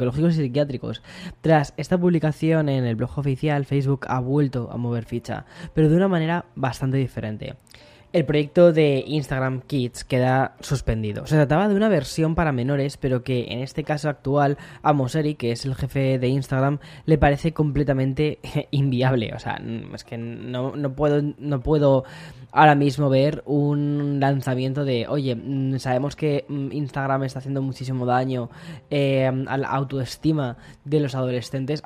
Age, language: 10-29, Spanish